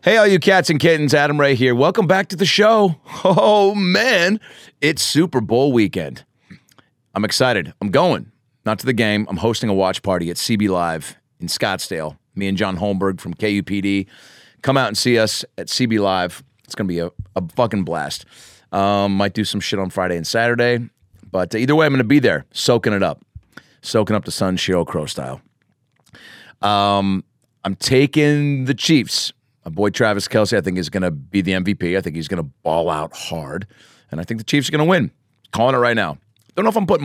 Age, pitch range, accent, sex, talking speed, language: 30-49, 95-135 Hz, American, male, 210 wpm, English